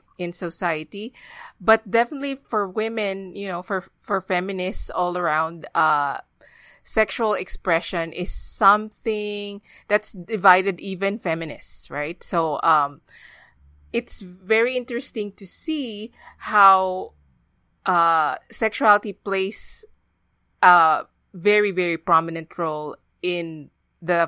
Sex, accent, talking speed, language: female, Filipino, 100 wpm, English